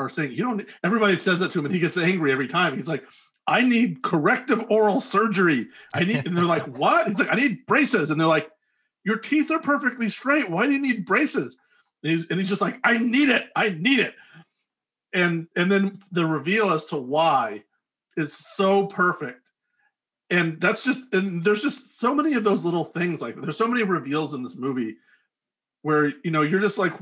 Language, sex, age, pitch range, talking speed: English, male, 40-59, 155-215 Hz, 205 wpm